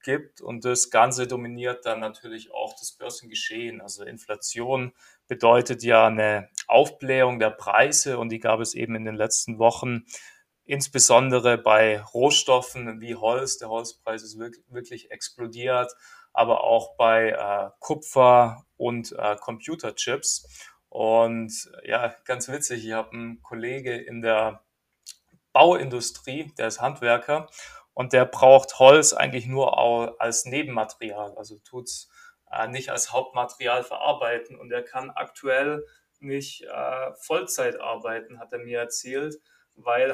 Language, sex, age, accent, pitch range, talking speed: German, male, 20-39, German, 115-135 Hz, 130 wpm